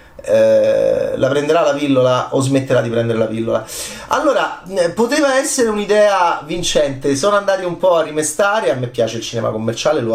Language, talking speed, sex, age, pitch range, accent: Italian, 165 wpm, male, 30-49, 115-155 Hz, native